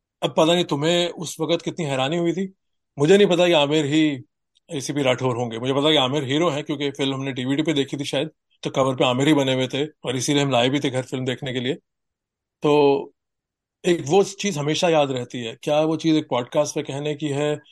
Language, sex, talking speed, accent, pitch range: Hindi, male, 225 wpm, native, 130-155 Hz